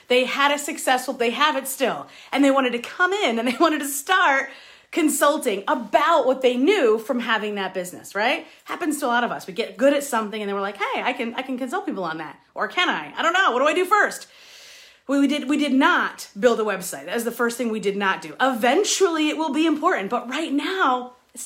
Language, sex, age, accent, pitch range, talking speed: English, female, 40-59, American, 215-290 Hz, 255 wpm